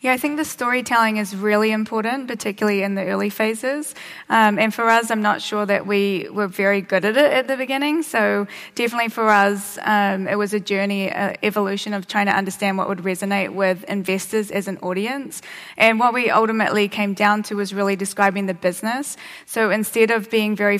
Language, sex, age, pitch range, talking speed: English, female, 20-39, 200-225 Hz, 200 wpm